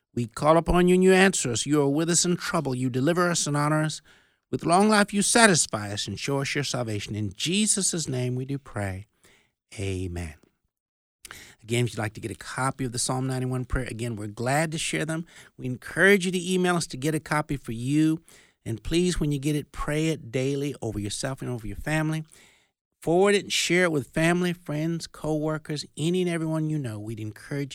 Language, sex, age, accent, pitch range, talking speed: English, male, 60-79, American, 110-155 Hz, 215 wpm